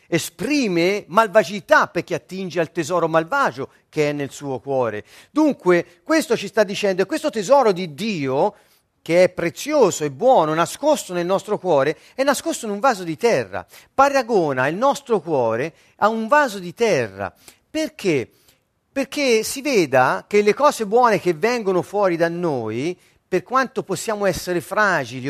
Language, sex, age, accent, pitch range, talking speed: Italian, male, 40-59, native, 150-220 Hz, 155 wpm